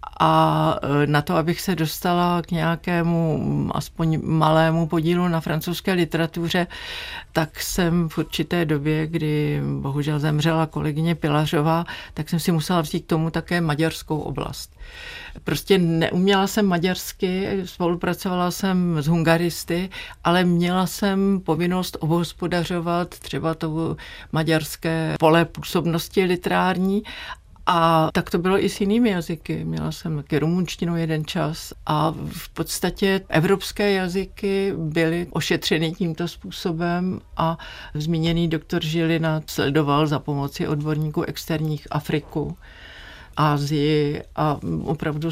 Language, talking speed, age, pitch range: Czech, 120 wpm, 50-69, 155-180 Hz